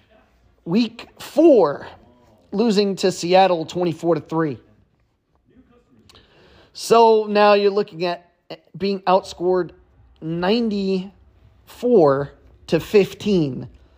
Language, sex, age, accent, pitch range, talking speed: English, male, 30-49, American, 155-205 Hz, 75 wpm